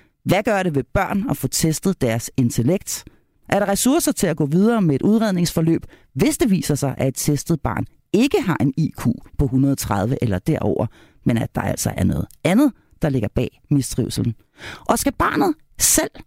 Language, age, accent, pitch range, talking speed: Danish, 40-59, native, 140-220 Hz, 190 wpm